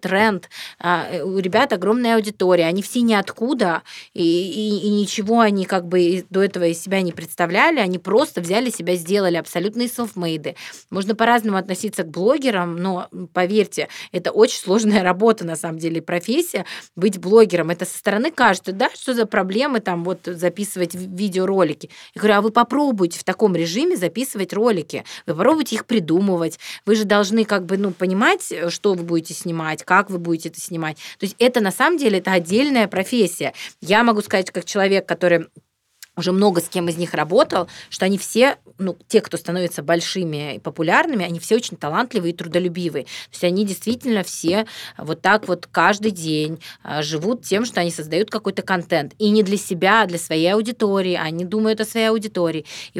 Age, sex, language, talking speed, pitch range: 20-39, female, Russian, 175 wpm, 175-220 Hz